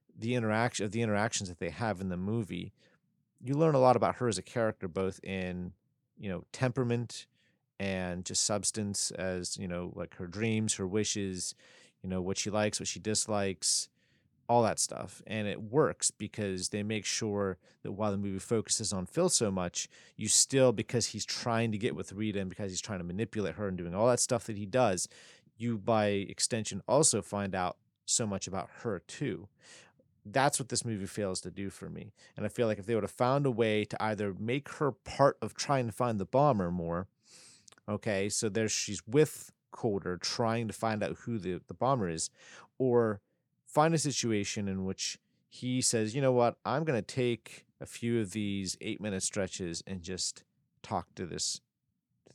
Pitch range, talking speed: 95-120 Hz, 195 wpm